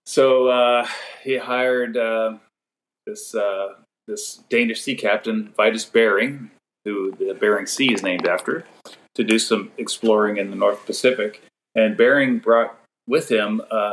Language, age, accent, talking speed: English, 40-59, American, 145 wpm